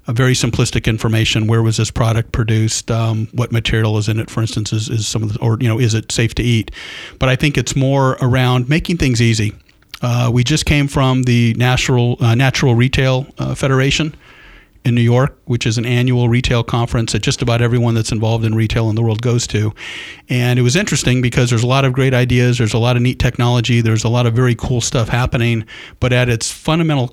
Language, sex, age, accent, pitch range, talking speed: English, male, 50-69, American, 115-130 Hz, 225 wpm